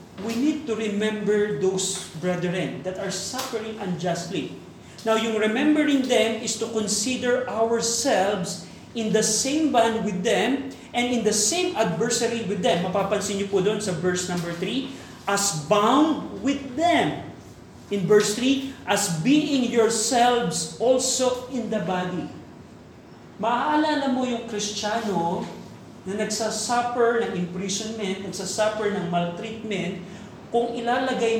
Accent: native